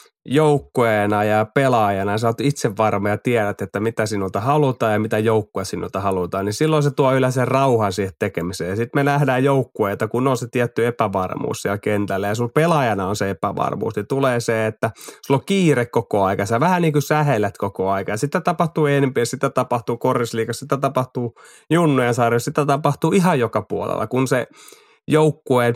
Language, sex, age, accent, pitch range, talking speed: Finnish, male, 30-49, native, 110-140 Hz, 180 wpm